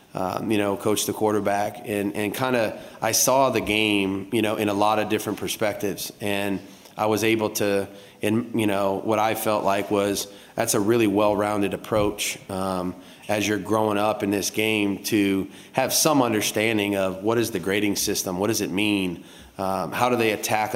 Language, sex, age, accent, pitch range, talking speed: English, male, 30-49, American, 100-110 Hz, 190 wpm